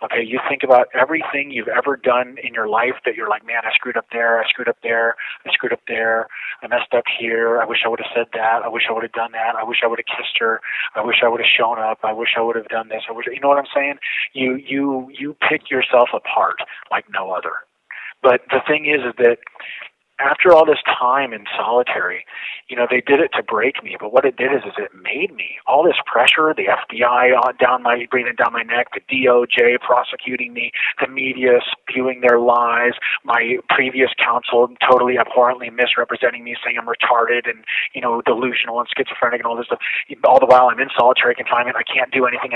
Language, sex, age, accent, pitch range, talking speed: English, male, 40-59, American, 120-130 Hz, 225 wpm